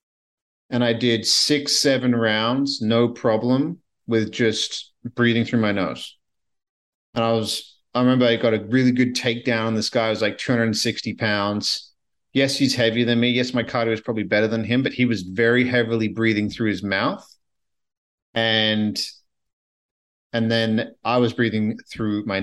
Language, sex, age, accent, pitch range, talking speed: English, male, 40-59, American, 100-120 Hz, 165 wpm